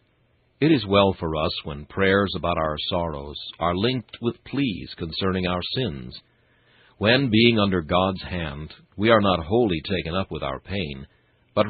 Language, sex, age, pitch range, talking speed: English, male, 60-79, 80-115 Hz, 165 wpm